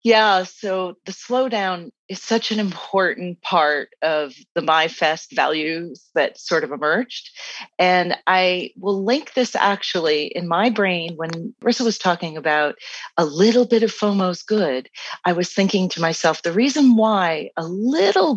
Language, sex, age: English, female, 40-59